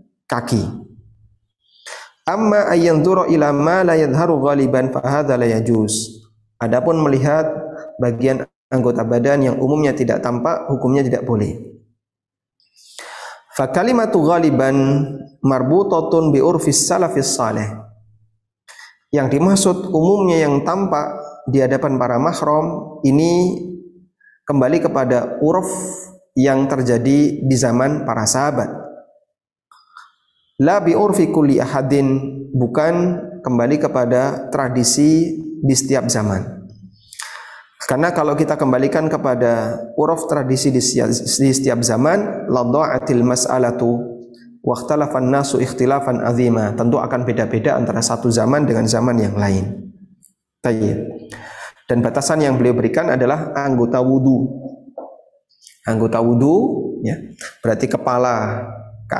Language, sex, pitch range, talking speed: Indonesian, male, 120-155 Hz, 90 wpm